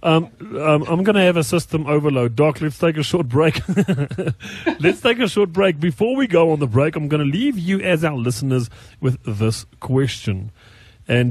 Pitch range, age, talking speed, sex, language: 120-165 Hz, 40-59, 200 wpm, male, English